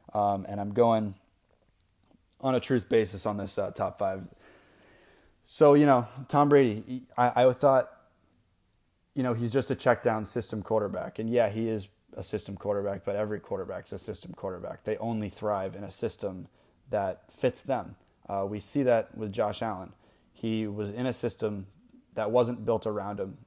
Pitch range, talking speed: 100-120 Hz, 180 wpm